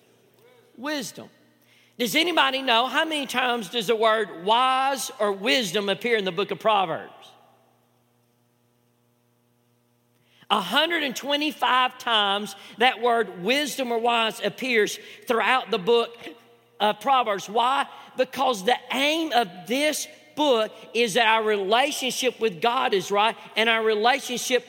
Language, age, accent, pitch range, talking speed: English, 50-69, American, 205-255 Hz, 120 wpm